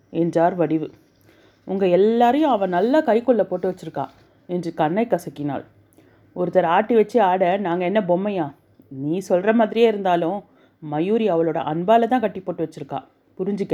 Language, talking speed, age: Tamil, 135 wpm, 30-49